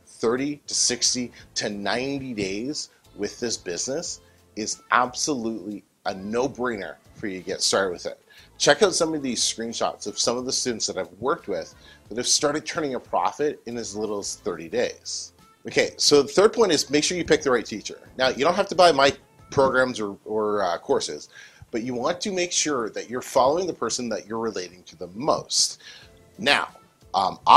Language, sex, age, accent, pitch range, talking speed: English, male, 30-49, American, 105-145 Hz, 200 wpm